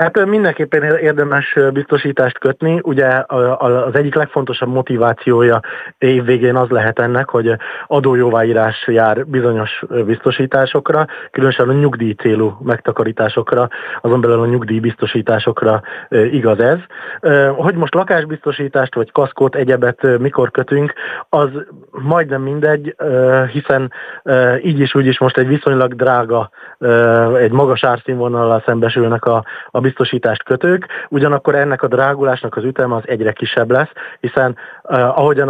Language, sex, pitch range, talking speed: Hungarian, male, 120-140 Hz, 120 wpm